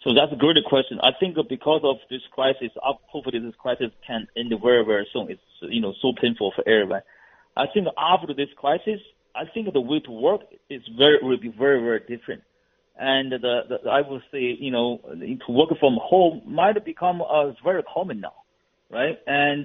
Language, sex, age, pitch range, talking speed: English, male, 40-59, 125-160 Hz, 200 wpm